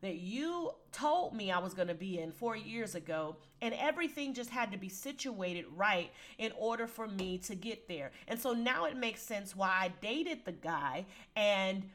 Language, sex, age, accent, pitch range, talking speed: English, female, 30-49, American, 185-255 Hz, 195 wpm